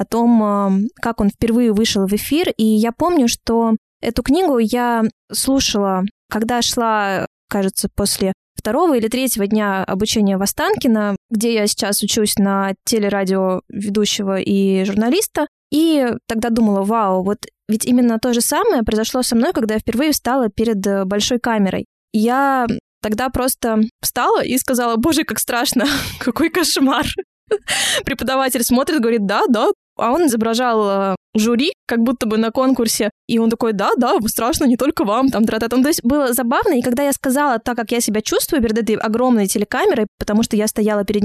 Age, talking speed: 20-39, 170 wpm